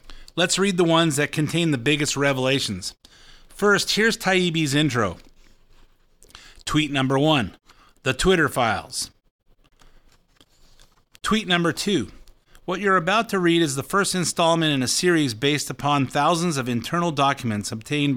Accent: American